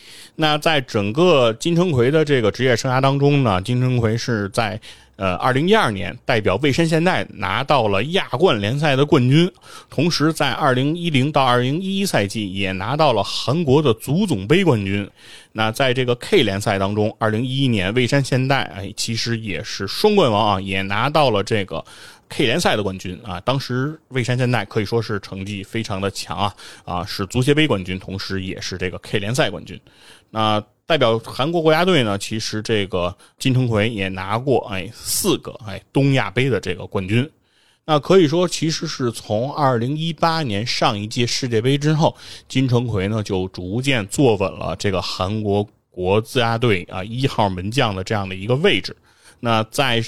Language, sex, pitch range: Chinese, male, 100-140 Hz